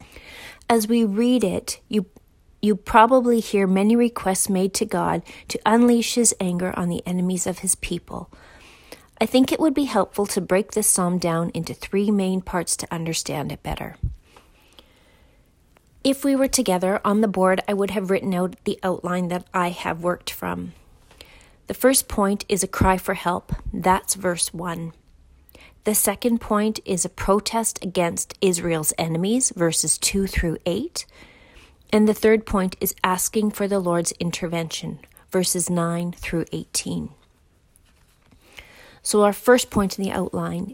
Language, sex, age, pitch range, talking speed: English, female, 40-59, 175-215 Hz, 155 wpm